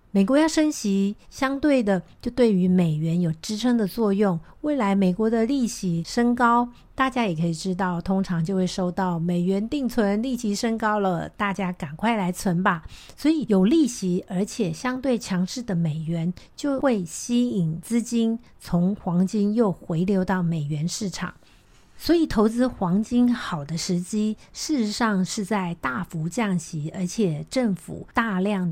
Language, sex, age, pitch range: Chinese, female, 50-69, 180-230 Hz